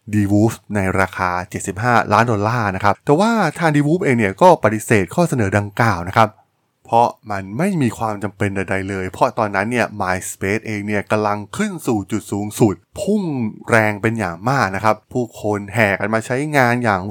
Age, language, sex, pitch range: 20-39, Thai, male, 100-130 Hz